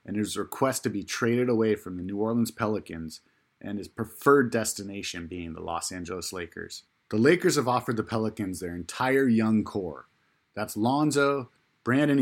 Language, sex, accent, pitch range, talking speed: English, male, American, 100-130 Hz, 165 wpm